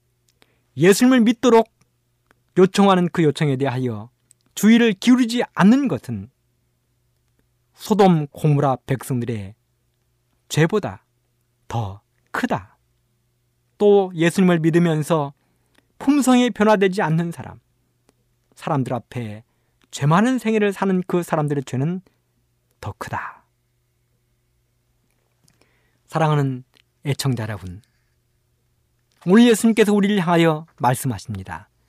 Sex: male